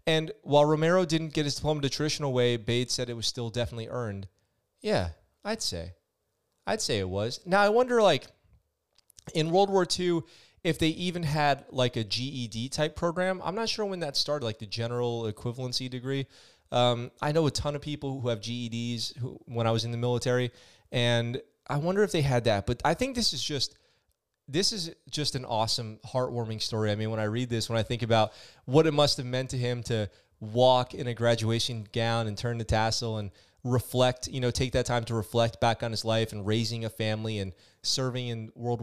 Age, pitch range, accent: 30-49, 110-140 Hz, American